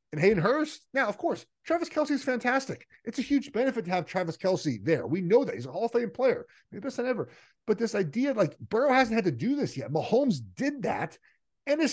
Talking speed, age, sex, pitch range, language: 235 wpm, 30-49, male, 130-205 Hz, English